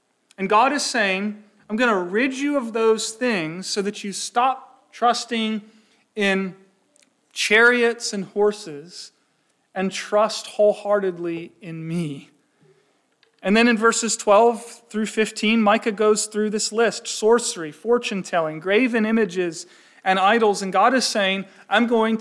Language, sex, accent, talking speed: English, male, American, 140 wpm